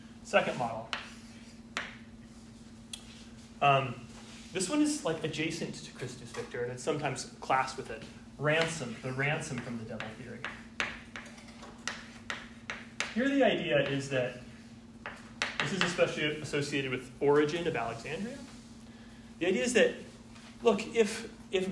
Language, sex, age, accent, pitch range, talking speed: English, male, 30-49, American, 115-175 Hz, 120 wpm